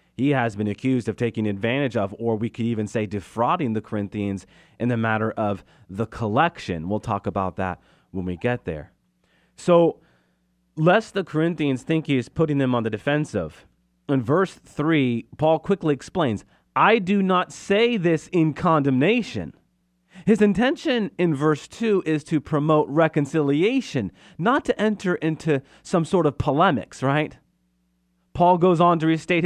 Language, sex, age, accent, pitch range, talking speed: English, male, 30-49, American, 115-170 Hz, 160 wpm